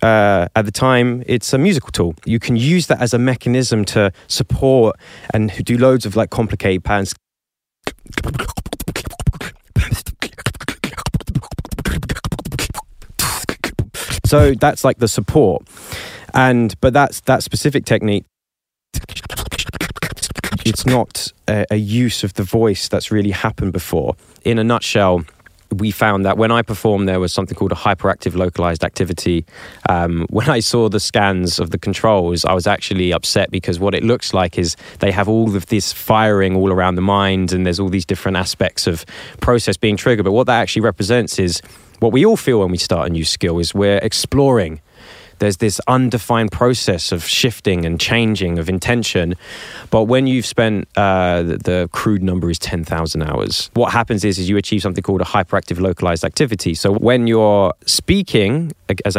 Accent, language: British, English